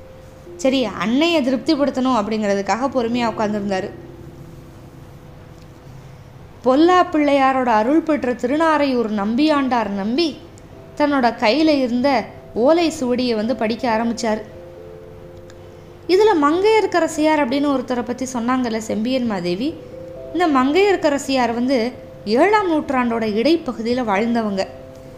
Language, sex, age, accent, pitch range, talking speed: Tamil, female, 20-39, native, 200-290 Hz, 90 wpm